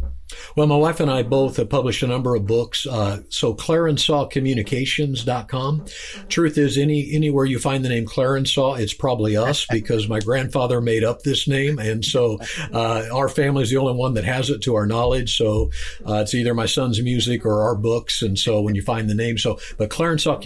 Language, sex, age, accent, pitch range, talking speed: English, male, 50-69, American, 105-130 Hz, 200 wpm